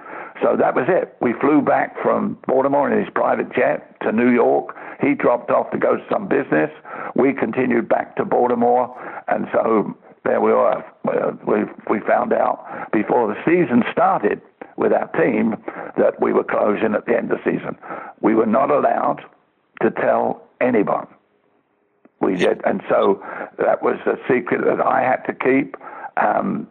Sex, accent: male, British